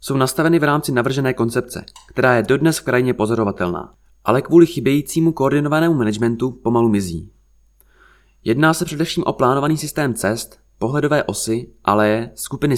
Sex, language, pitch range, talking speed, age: male, Czech, 110-140 Hz, 140 wpm, 20-39